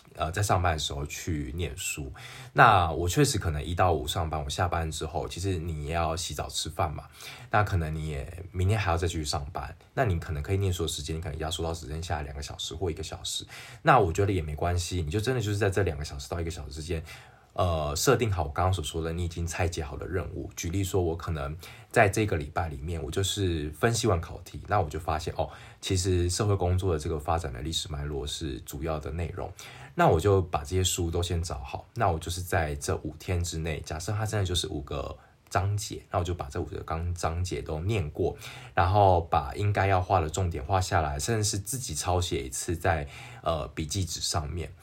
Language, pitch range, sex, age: Chinese, 80-100 Hz, male, 20-39